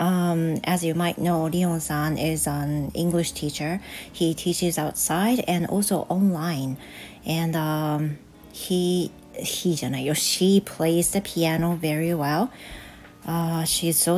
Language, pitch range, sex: Japanese, 155-185 Hz, female